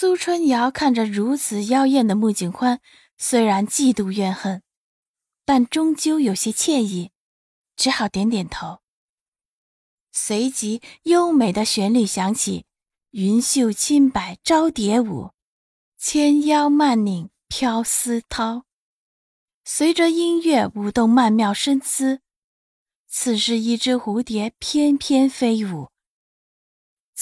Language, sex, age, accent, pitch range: Chinese, female, 20-39, native, 210-285 Hz